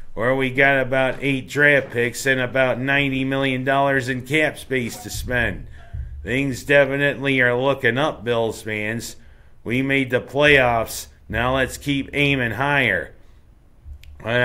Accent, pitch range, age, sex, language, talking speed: American, 110-135 Hz, 50-69, male, English, 135 wpm